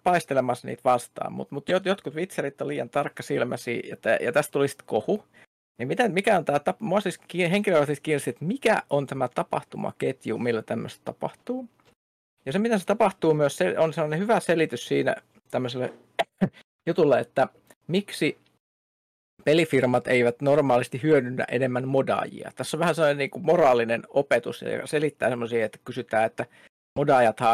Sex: male